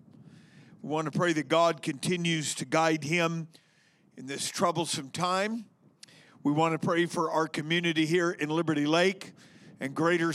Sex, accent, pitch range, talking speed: male, American, 165-195 Hz, 155 wpm